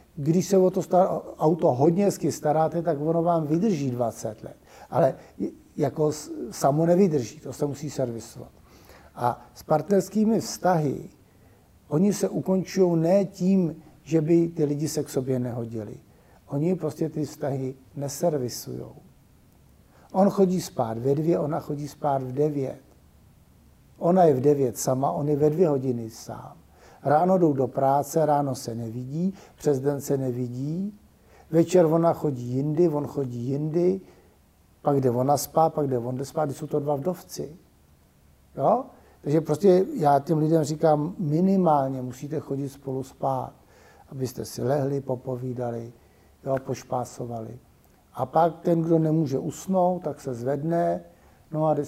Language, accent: Czech, native